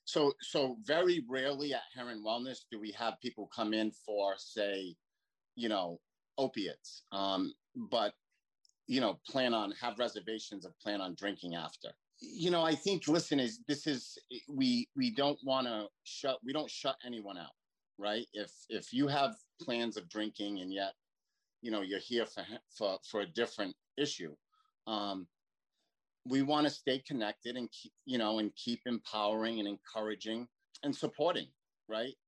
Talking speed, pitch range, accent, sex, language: 165 wpm, 100-140 Hz, American, male, English